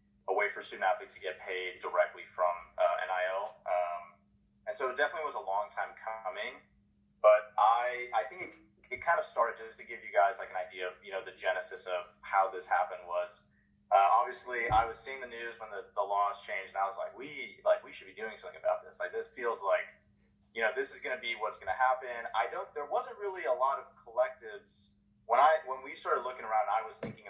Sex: male